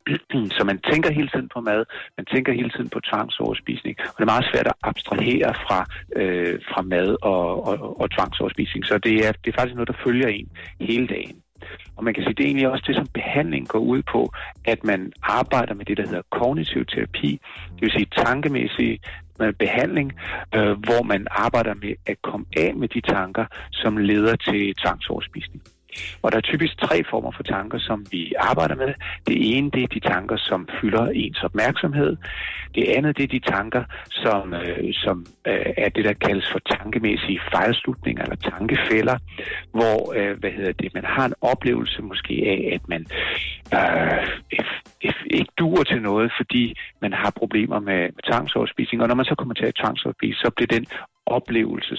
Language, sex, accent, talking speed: Danish, male, native, 190 wpm